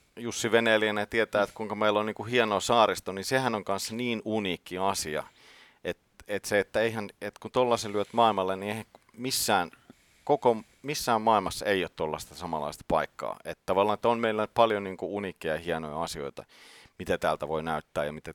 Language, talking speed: Finnish, 185 wpm